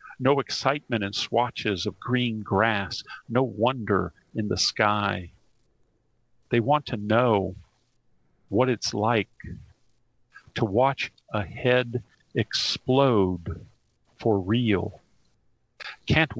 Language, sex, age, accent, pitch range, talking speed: English, male, 50-69, American, 105-140 Hz, 100 wpm